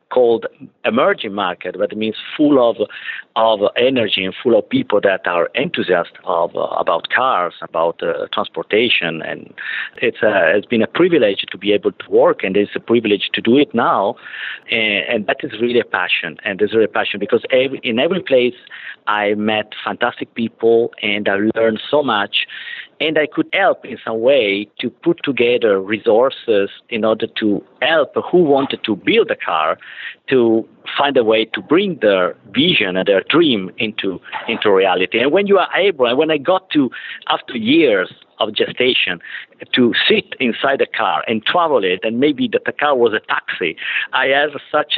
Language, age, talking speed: English, 50-69, 185 wpm